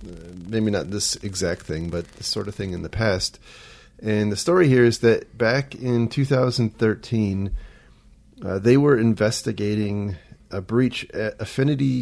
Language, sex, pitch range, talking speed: English, male, 100-115 Hz, 155 wpm